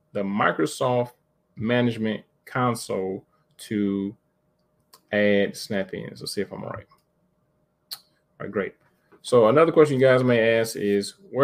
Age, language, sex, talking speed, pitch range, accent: 30-49, English, male, 125 wpm, 100-125 Hz, American